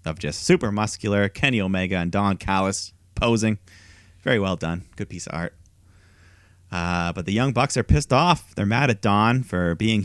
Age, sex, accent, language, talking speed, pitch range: 30-49, male, American, English, 185 wpm, 90-115 Hz